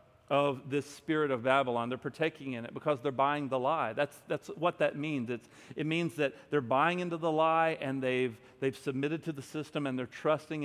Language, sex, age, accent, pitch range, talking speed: English, male, 40-59, American, 135-175 Hz, 215 wpm